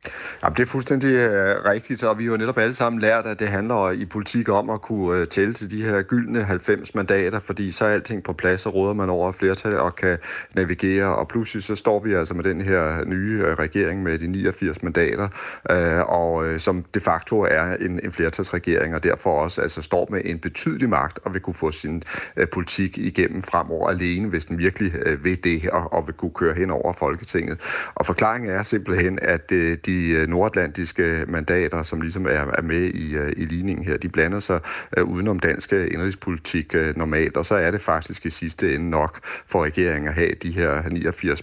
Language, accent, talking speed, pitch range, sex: Danish, native, 195 wpm, 85-105 Hz, male